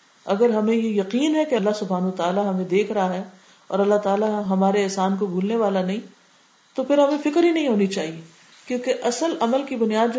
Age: 40-59